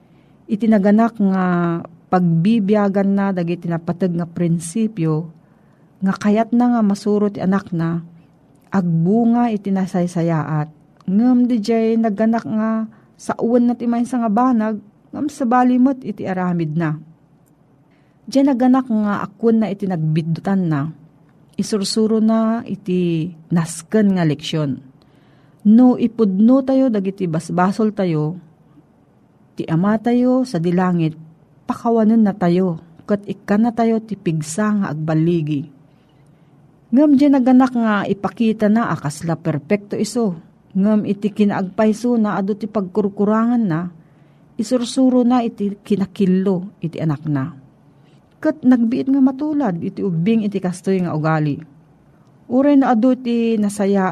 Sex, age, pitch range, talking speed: female, 40-59, 165-225 Hz, 120 wpm